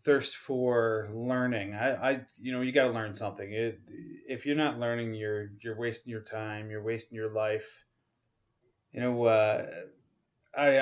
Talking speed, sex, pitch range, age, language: 165 wpm, male, 110-130 Hz, 30-49, English